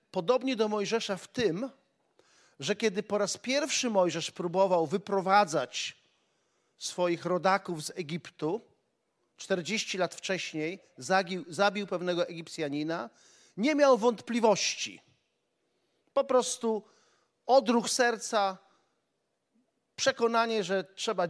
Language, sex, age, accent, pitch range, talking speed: Polish, male, 40-59, native, 190-250 Hz, 95 wpm